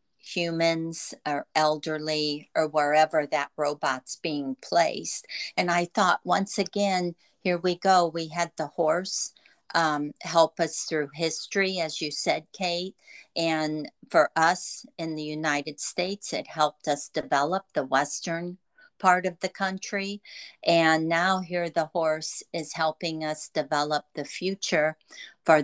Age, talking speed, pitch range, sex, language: 50-69, 140 wpm, 155-185 Hz, female, English